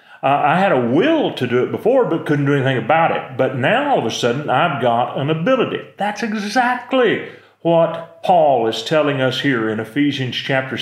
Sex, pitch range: male, 130-165 Hz